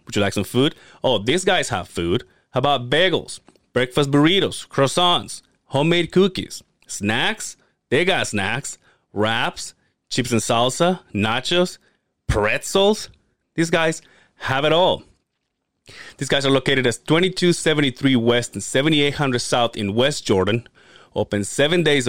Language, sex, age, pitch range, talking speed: English, male, 30-49, 115-150 Hz, 135 wpm